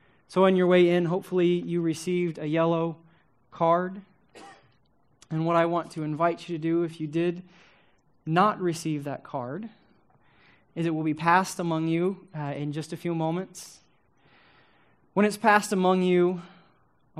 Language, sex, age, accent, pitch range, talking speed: English, male, 20-39, American, 145-175 Hz, 160 wpm